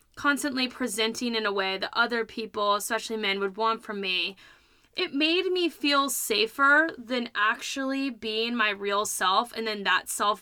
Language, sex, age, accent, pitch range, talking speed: English, female, 20-39, American, 205-260 Hz, 165 wpm